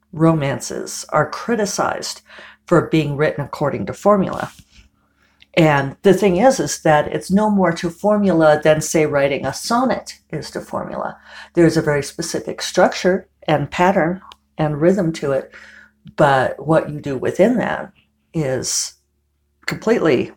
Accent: American